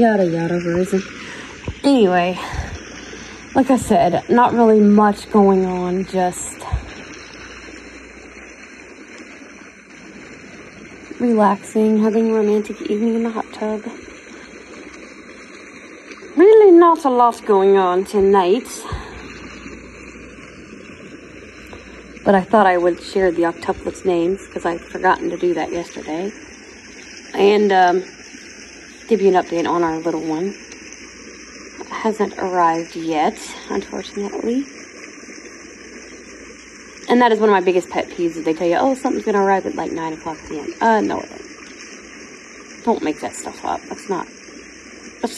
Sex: female